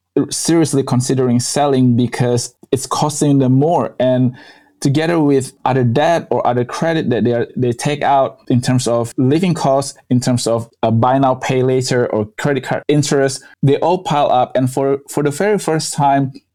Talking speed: 180 wpm